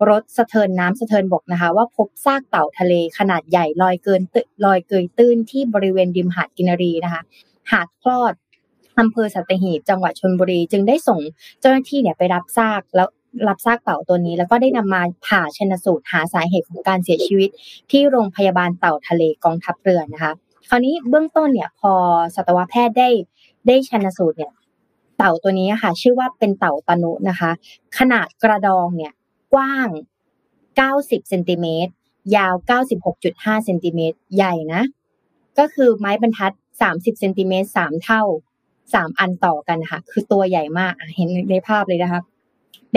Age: 20-39